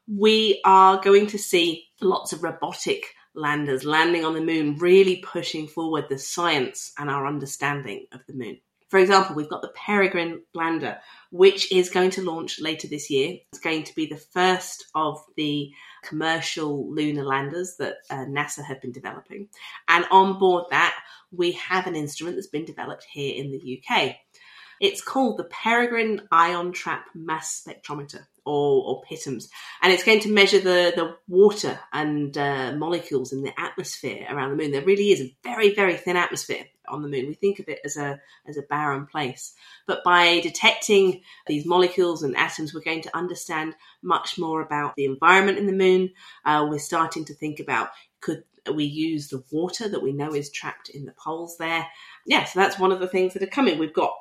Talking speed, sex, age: 190 wpm, female, 40-59